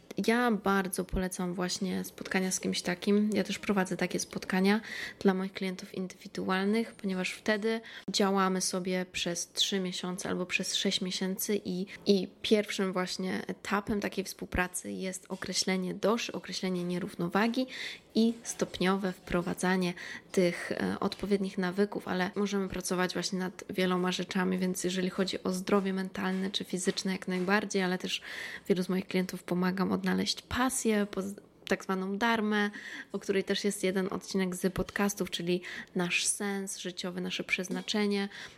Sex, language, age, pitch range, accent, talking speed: female, Polish, 20-39, 185-200 Hz, native, 140 wpm